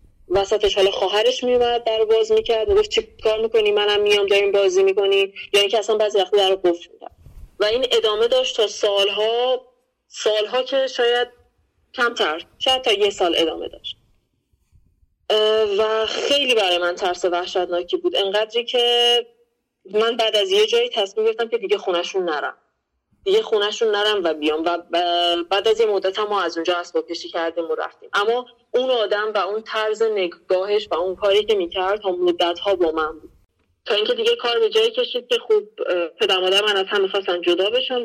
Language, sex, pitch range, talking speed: Persian, female, 180-240 Hz, 170 wpm